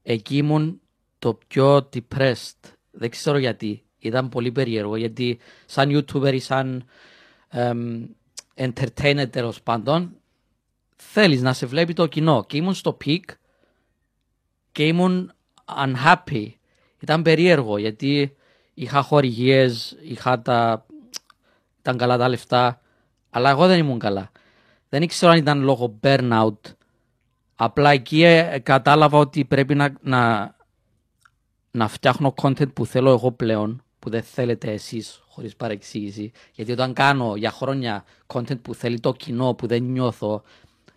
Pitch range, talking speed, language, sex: 115-140 Hz, 125 wpm, Greek, male